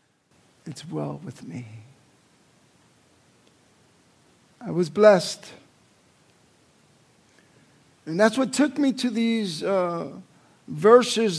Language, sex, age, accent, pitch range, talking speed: English, male, 50-69, American, 165-210 Hz, 85 wpm